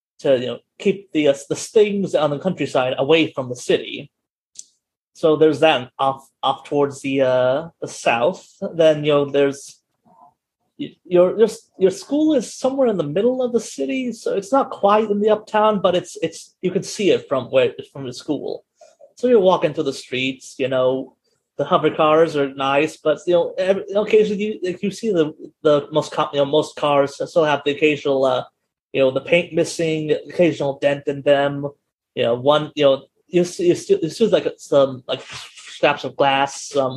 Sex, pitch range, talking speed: male, 140-210 Hz, 195 wpm